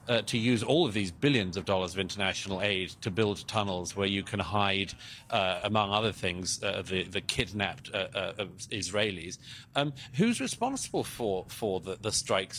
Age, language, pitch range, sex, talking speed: 40-59, English, 105-145 Hz, male, 180 wpm